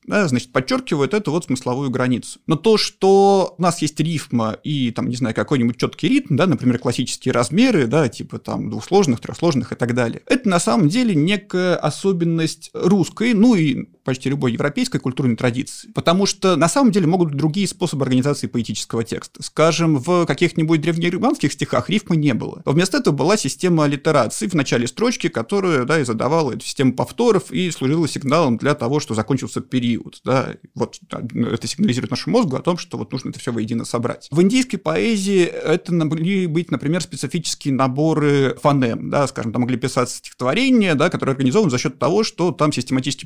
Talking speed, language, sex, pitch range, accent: 185 wpm, Russian, male, 130-180 Hz, native